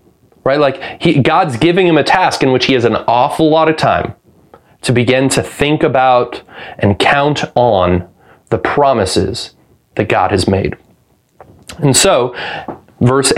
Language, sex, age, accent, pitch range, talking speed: English, male, 30-49, American, 120-145 Hz, 150 wpm